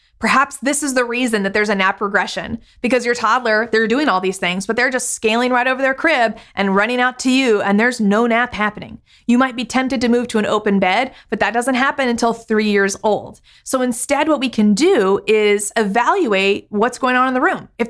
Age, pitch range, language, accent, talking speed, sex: 30-49, 205-250 Hz, English, American, 230 wpm, female